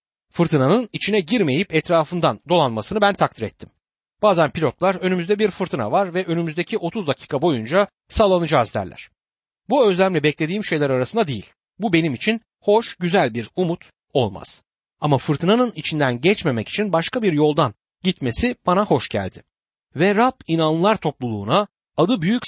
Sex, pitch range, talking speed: male, 135-195 Hz, 140 wpm